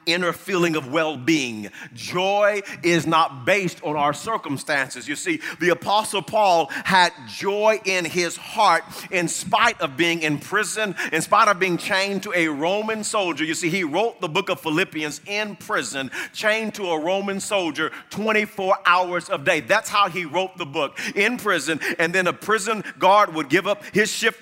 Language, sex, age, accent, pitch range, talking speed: English, male, 40-59, American, 180-225 Hz, 180 wpm